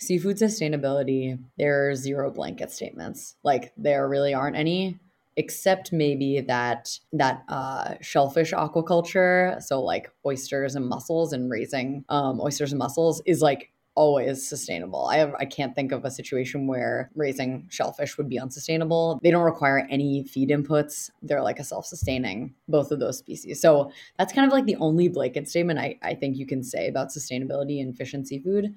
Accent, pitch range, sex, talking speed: American, 130-160 Hz, female, 175 wpm